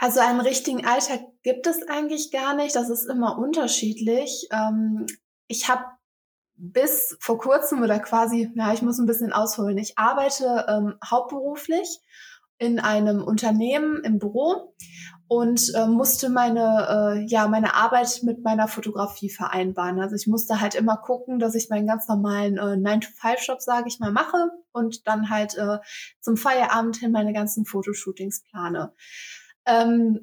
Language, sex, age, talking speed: German, female, 20-39, 150 wpm